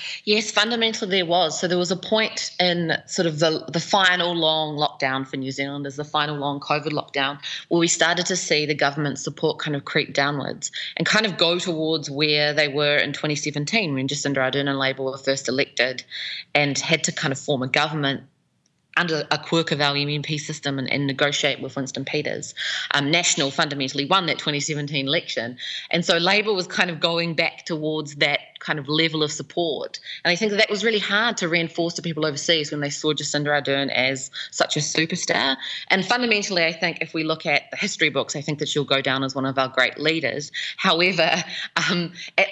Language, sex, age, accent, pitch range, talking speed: English, female, 20-39, Australian, 145-175 Hz, 205 wpm